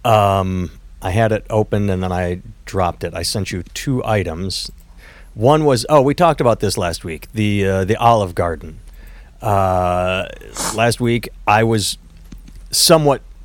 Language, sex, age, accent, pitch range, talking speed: English, male, 30-49, American, 95-120 Hz, 155 wpm